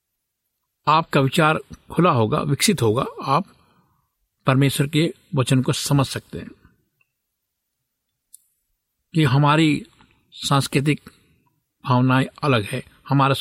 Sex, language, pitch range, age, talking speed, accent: male, Hindi, 125-150 Hz, 50-69, 95 wpm, native